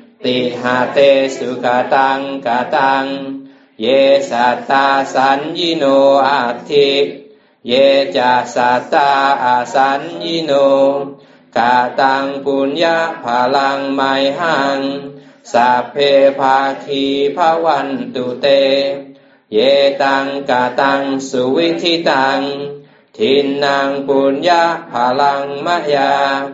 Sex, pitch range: male, 135-140 Hz